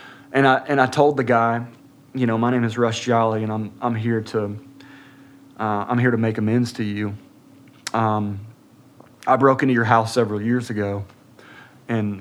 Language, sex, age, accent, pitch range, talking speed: English, male, 30-49, American, 110-130 Hz, 180 wpm